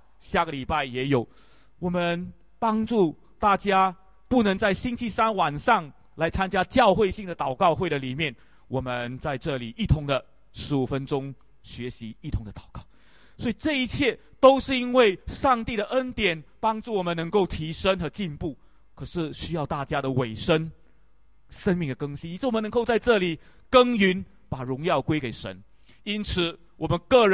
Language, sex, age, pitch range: English, male, 30-49, 145-205 Hz